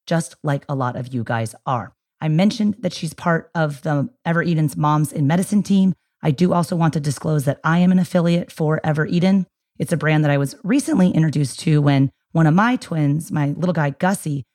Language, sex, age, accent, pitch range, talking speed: English, female, 30-49, American, 140-180 Hz, 220 wpm